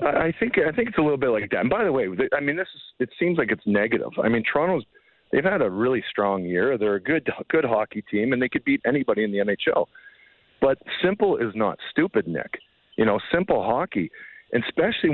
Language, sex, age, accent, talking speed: English, male, 40-59, American, 215 wpm